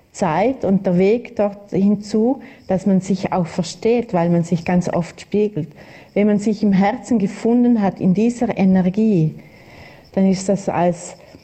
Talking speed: 165 wpm